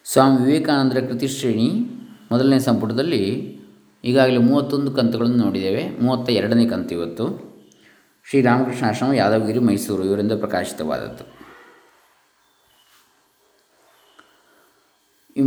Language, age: Kannada, 20-39